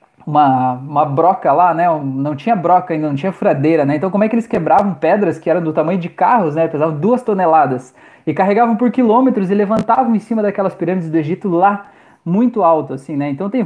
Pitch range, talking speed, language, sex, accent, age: 150-200 Hz, 215 wpm, Portuguese, male, Brazilian, 20-39